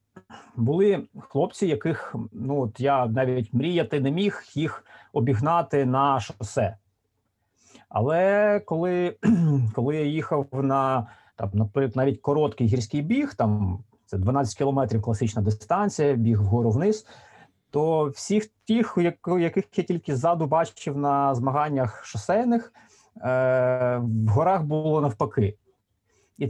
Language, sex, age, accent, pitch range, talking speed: Ukrainian, male, 30-49, native, 125-180 Hz, 115 wpm